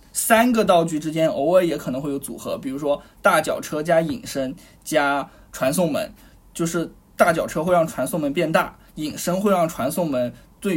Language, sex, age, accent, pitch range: Chinese, male, 20-39, native, 160-225 Hz